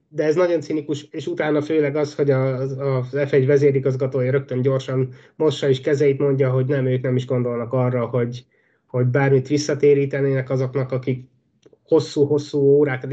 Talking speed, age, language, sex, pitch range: 155 wpm, 20-39, Hungarian, male, 125-150 Hz